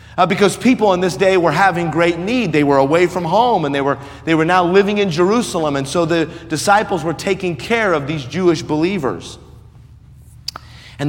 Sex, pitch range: male, 125-165 Hz